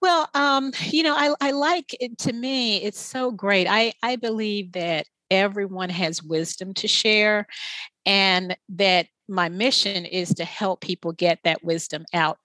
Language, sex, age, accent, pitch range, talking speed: English, female, 40-59, American, 180-225 Hz, 165 wpm